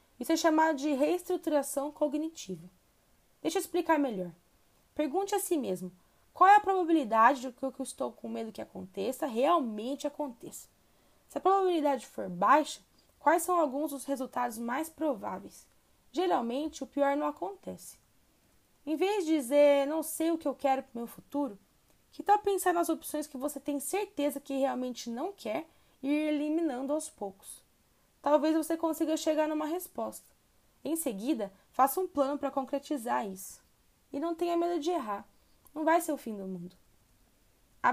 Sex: female